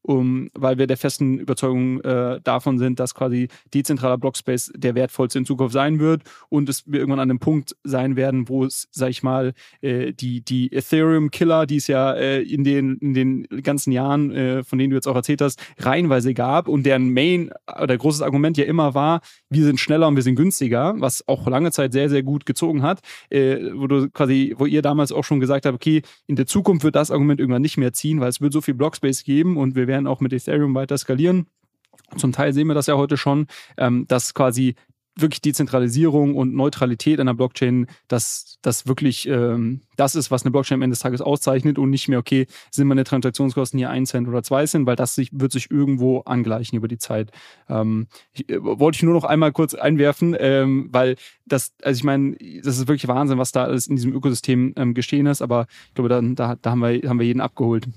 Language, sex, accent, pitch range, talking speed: German, male, German, 130-145 Hz, 215 wpm